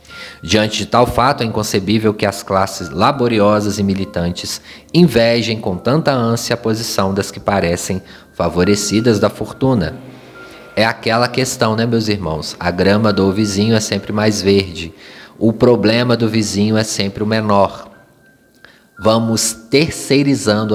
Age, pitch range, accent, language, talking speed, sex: 20-39, 100-120 Hz, Brazilian, Portuguese, 140 wpm, male